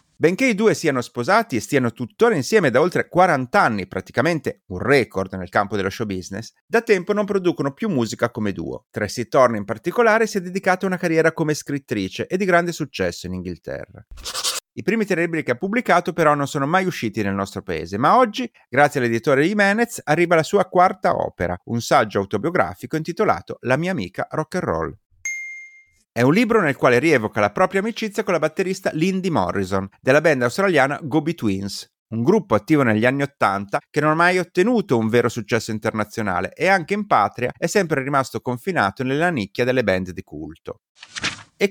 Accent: native